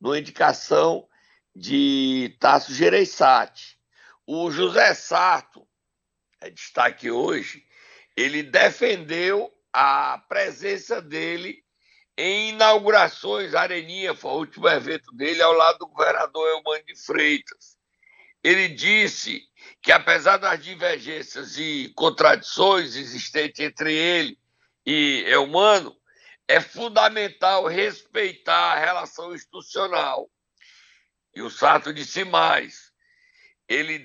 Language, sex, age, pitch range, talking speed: Portuguese, male, 60-79, 175-295 Hz, 100 wpm